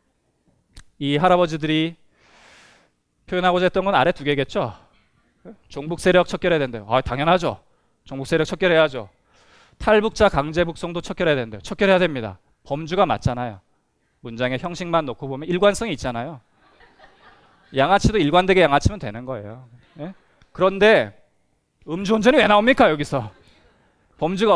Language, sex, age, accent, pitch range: Korean, male, 20-39, native, 120-180 Hz